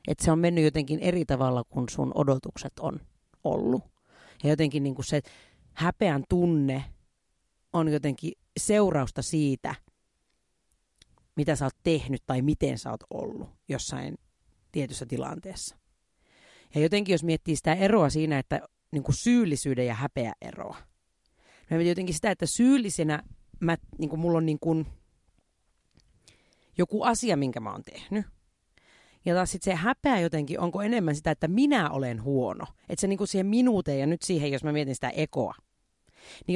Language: Finnish